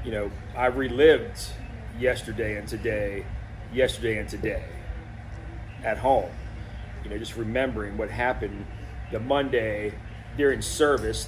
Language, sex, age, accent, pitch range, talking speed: English, male, 30-49, American, 105-125 Hz, 115 wpm